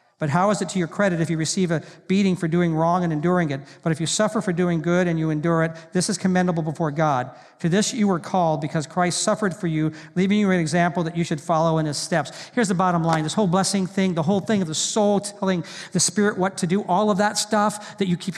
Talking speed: 270 wpm